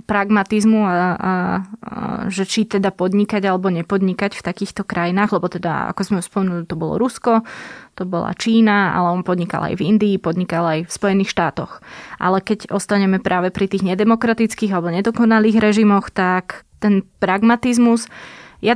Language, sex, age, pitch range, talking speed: Slovak, female, 20-39, 185-220 Hz, 155 wpm